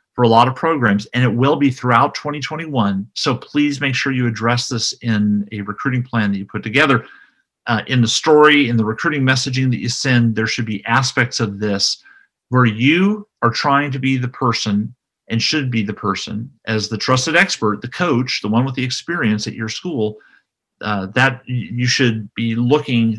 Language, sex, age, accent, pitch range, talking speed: English, male, 40-59, American, 105-135 Hz, 195 wpm